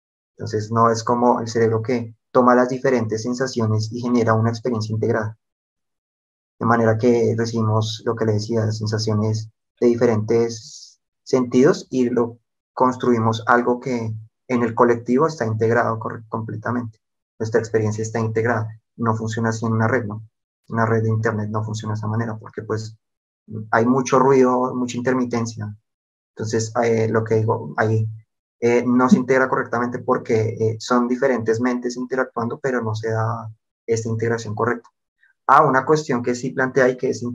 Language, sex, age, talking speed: Spanish, male, 30-49, 160 wpm